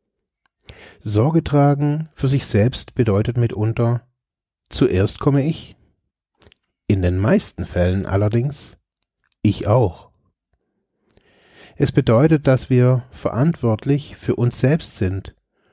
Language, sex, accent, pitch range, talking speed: German, male, German, 100-130 Hz, 100 wpm